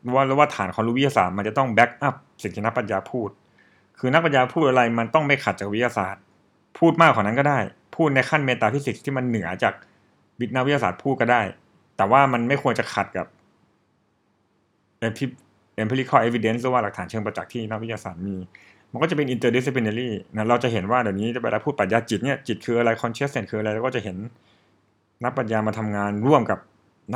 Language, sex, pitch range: Thai, male, 105-130 Hz